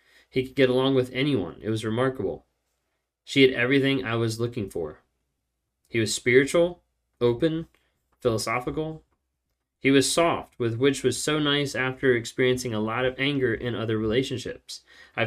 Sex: male